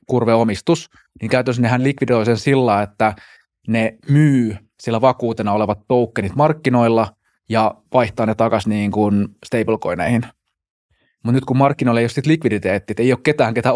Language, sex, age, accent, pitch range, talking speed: Finnish, male, 20-39, native, 105-125 Hz, 135 wpm